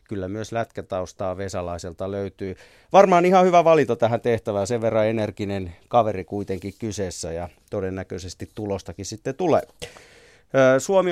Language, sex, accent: Finnish, male, native